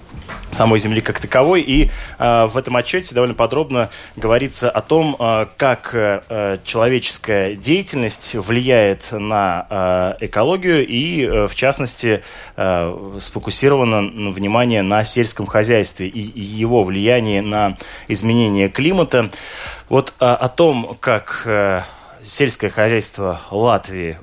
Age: 20-39